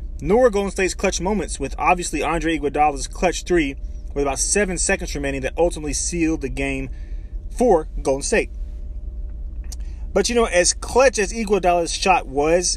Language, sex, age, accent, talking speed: English, male, 30-49, American, 155 wpm